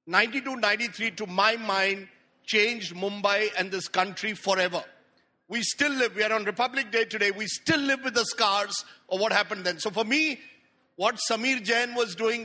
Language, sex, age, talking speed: English, male, 50-69, 185 wpm